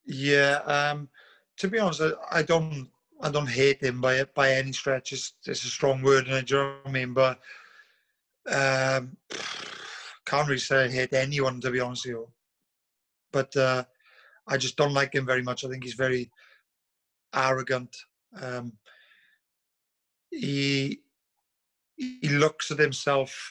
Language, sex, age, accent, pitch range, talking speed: English, male, 30-49, British, 130-145 Hz, 145 wpm